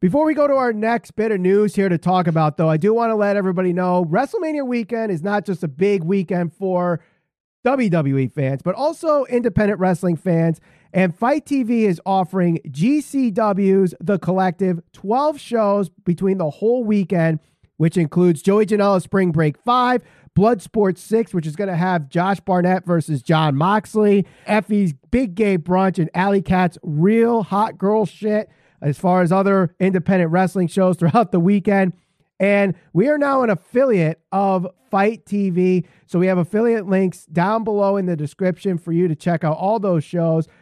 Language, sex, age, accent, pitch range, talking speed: English, male, 30-49, American, 165-210 Hz, 175 wpm